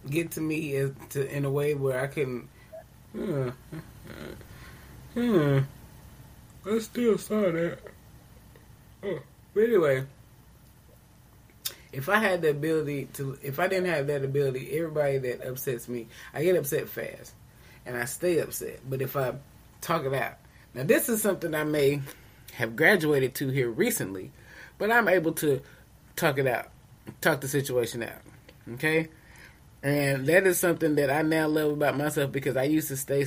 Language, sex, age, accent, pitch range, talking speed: English, male, 20-39, American, 125-155 Hz, 155 wpm